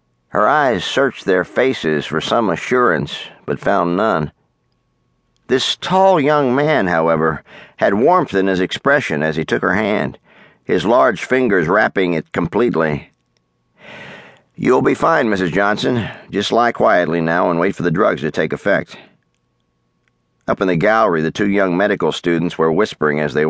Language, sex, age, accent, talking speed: English, male, 50-69, American, 160 wpm